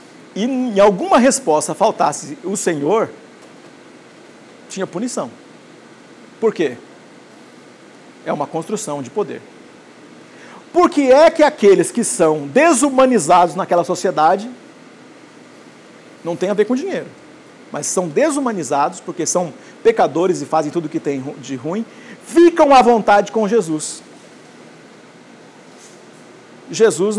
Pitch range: 200-285 Hz